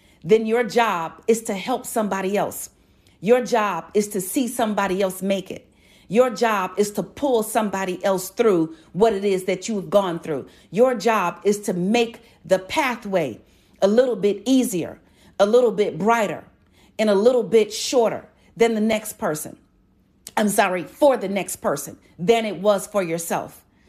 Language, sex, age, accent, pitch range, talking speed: English, female, 40-59, American, 190-235 Hz, 170 wpm